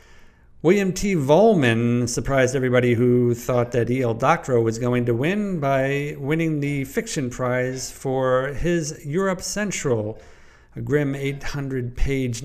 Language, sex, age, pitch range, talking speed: English, male, 50-69, 120-140 Hz, 125 wpm